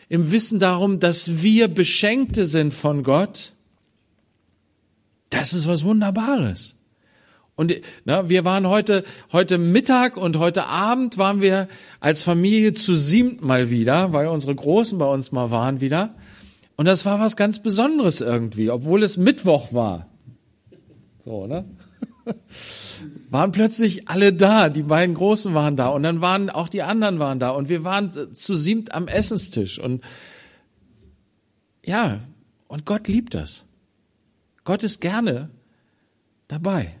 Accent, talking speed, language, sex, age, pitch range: German, 135 wpm, German, male, 40-59, 120-195 Hz